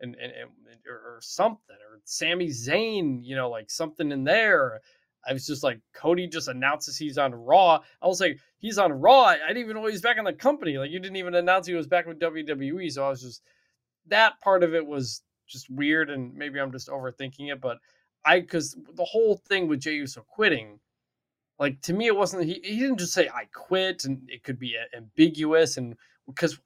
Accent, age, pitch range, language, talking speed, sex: American, 20-39, 135-175 Hz, English, 215 wpm, male